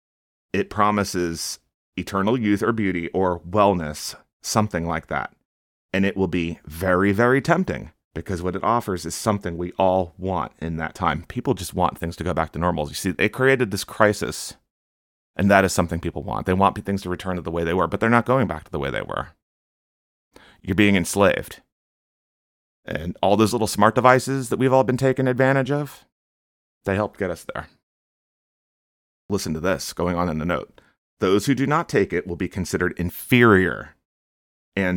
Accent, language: American, English